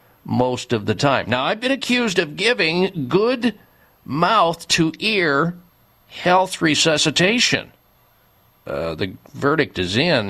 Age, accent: 50-69, American